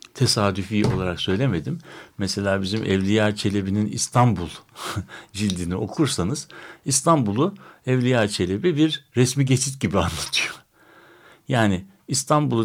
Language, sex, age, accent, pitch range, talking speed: Turkish, male, 60-79, native, 100-135 Hz, 95 wpm